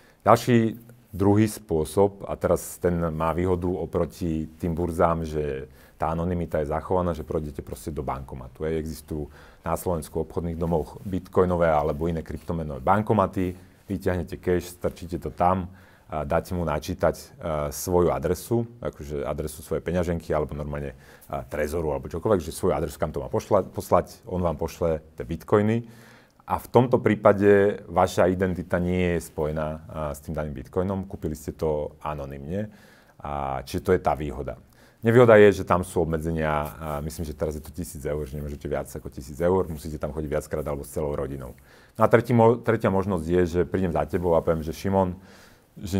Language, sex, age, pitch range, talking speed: Slovak, male, 40-59, 75-95 Hz, 175 wpm